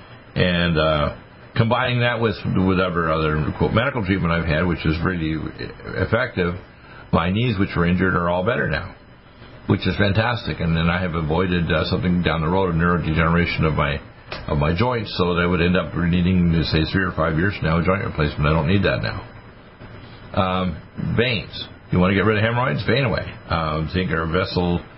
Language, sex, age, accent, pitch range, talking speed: English, male, 60-79, American, 85-105 Hz, 195 wpm